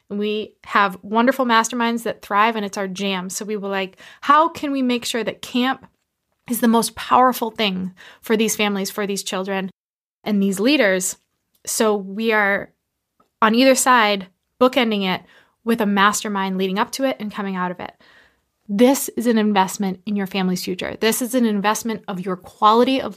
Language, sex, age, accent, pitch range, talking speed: English, female, 20-39, American, 200-245 Hz, 185 wpm